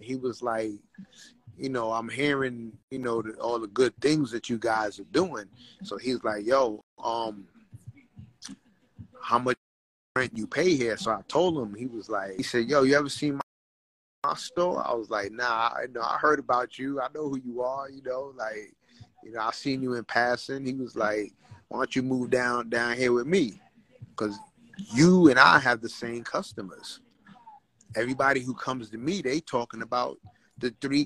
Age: 30-49